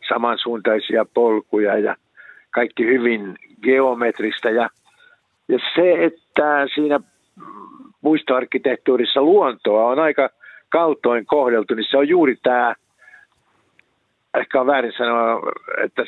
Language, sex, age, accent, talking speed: Finnish, male, 60-79, native, 100 wpm